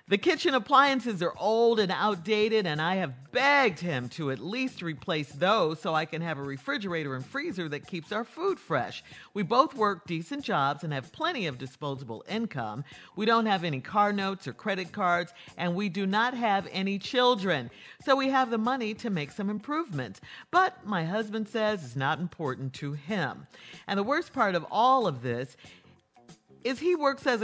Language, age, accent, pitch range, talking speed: English, 50-69, American, 155-230 Hz, 190 wpm